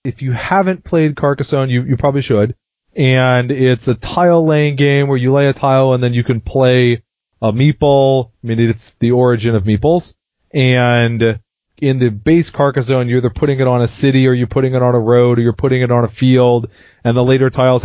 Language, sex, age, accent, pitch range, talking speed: English, male, 30-49, American, 115-140 Hz, 210 wpm